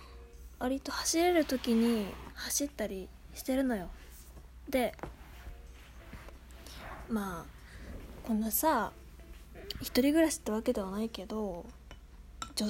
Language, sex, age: Japanese, female, 20-39